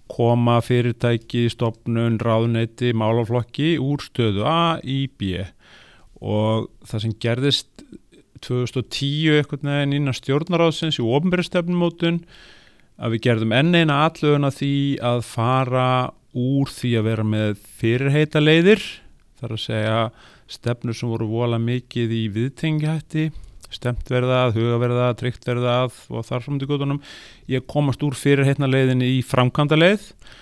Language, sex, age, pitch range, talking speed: English, male, 30-49, 115-140 Hz, 125 wpm